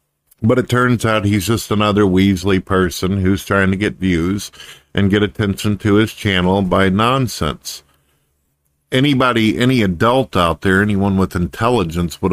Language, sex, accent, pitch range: English, male, American, 90-110 Hz